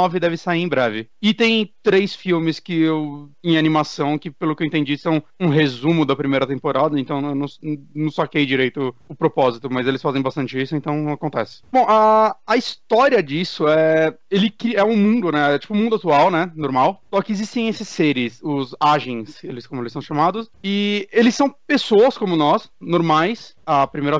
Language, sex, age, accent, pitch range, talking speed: Portuguese, male, 30-49, Brazilian, 145-195 Hz, 200 wpm